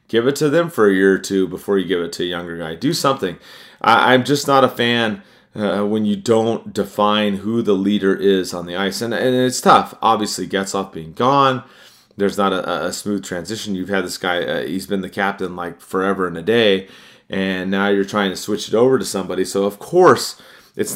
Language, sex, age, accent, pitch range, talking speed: English, male, 30-49, American, 95-115 Hz, 230 wpm